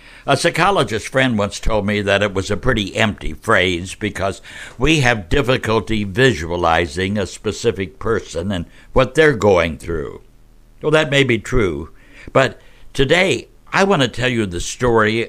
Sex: male